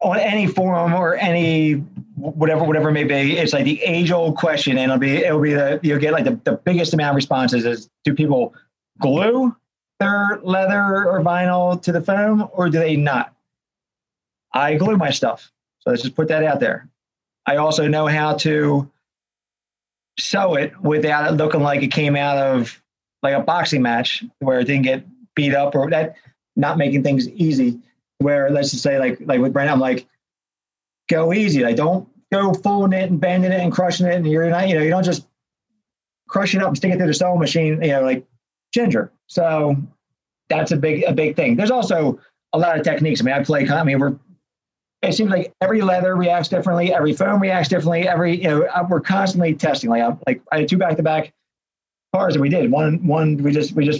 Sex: male